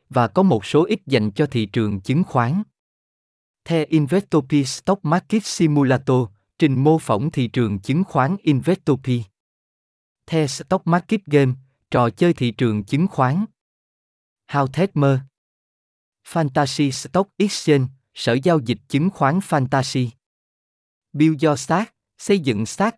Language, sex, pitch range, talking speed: Vietnamese, male, 115-160 Hz, 130 wpm